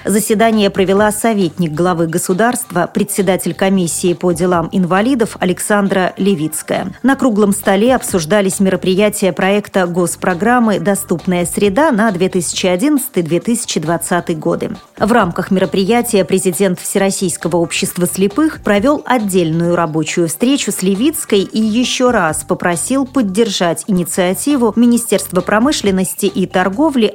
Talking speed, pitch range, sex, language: 105 wpm, 175-220 Hz, female, Russian